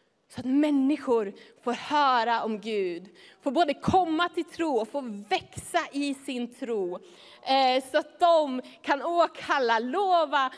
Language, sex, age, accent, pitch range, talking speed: English, female, 30-49, Swedish, 235-305 Hz, 135 wpm